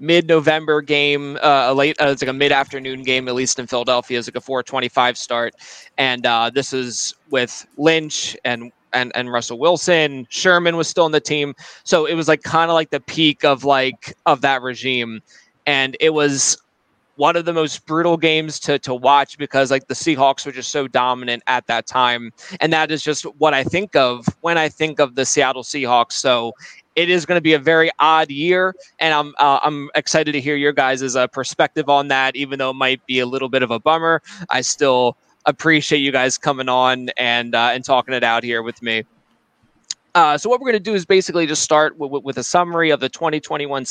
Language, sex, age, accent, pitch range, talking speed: English, male, 20-39, American, 130-160 Hz, 215 wpm